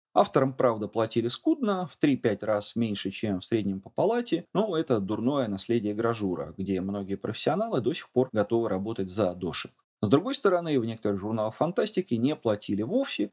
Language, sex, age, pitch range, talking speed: Russian, male, 20-39, 105-145 Hz, 170 wpm